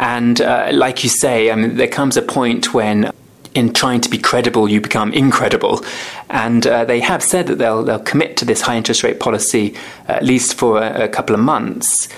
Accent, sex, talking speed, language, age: British, male, 200 wpm, English, 20-39